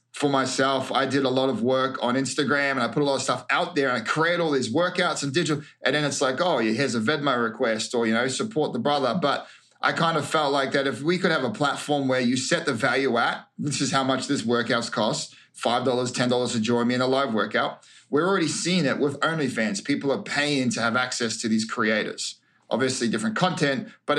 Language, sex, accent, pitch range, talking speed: English, male, Australian, 130-155 Hz, 240 wpm